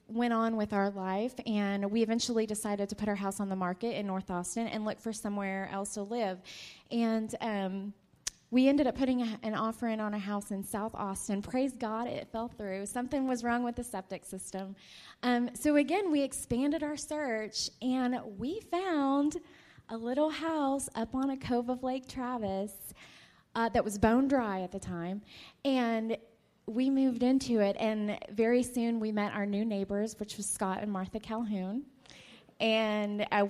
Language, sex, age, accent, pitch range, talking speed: English, female, 20-39, American, 205-250 Hz, 185 wpm